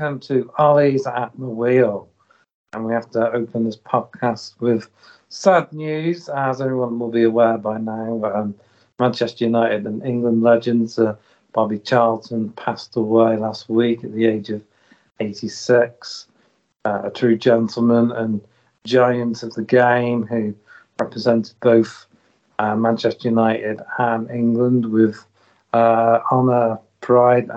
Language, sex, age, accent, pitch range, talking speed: English, male, 50-69, British, 110-120 Hz, 135 wpm